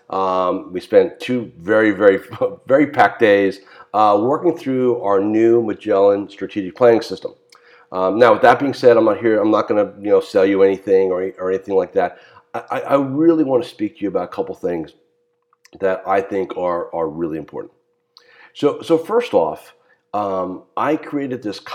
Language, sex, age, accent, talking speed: English, male, 50-69, American, 190 wpm